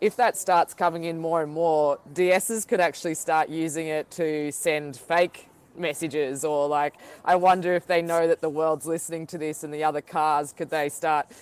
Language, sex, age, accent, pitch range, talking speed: English, female, 20-39, Australian, 150-170 Hz, 200 wpm